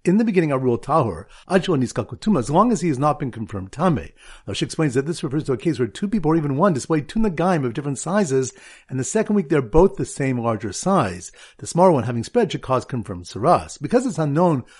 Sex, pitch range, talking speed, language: male, 130-185 Hz, 245 wpm, English